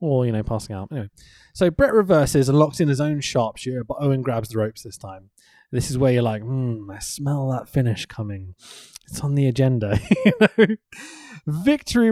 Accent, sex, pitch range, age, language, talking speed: British, male, 125-180 Hz, 20-39, English, 190 wpm